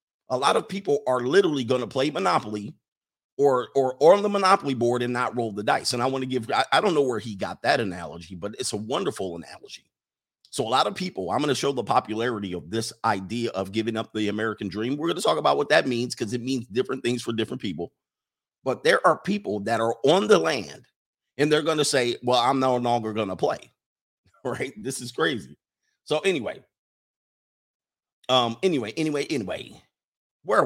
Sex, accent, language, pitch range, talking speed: male, American, English, 110-135 Hz, 215 wpm